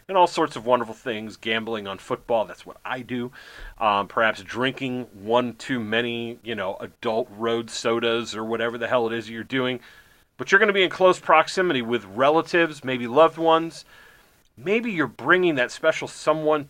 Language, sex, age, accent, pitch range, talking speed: English, male, 30-49, American, 115-155 Hz, 185 wpm